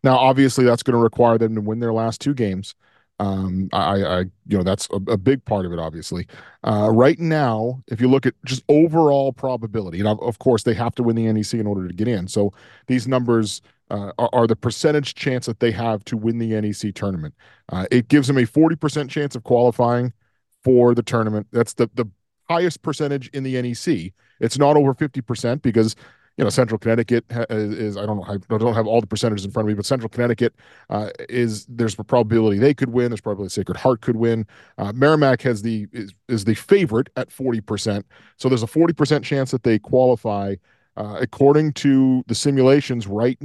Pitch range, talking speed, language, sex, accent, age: 105-130 Hz, 210 wpm, English, male, American, 40-59